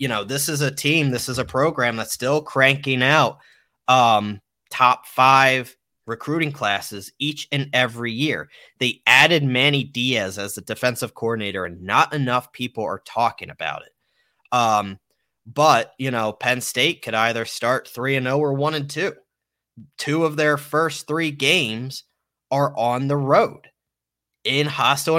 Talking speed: 160 wpm